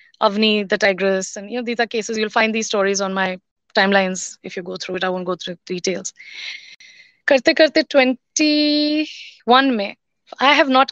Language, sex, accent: Hindi, female, native